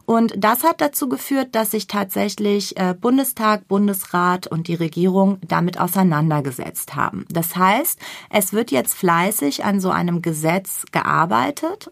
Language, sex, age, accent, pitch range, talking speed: German, female, 30-49, German, 185-250 Hz, 140 wpm